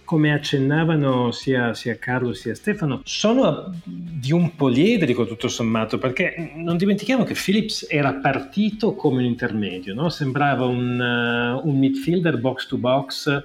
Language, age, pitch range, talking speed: Italian, 40-59, 125-155 Hz, 145 wpm